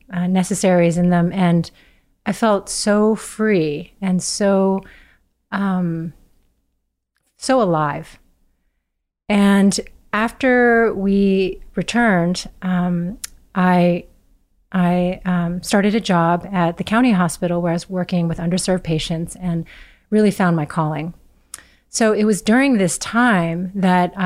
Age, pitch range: 30-49, 170-210 Hz